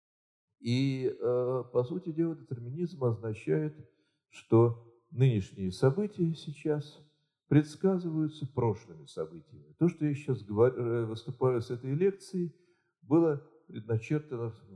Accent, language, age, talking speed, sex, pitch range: native, Russian, 40-59, 95 wpm, male, 105-150 Hz